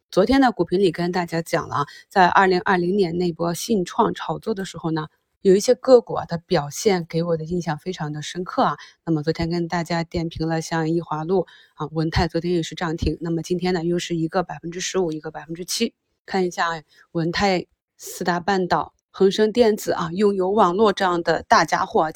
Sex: female